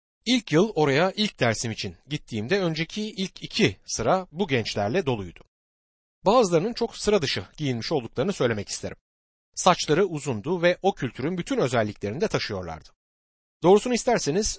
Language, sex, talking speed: Turkish, male, 135 wpm